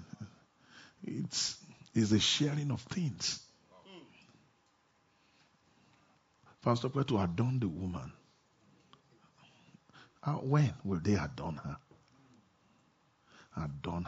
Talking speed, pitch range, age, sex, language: 85 wpm, 100-135 Hz, 50-69, male, English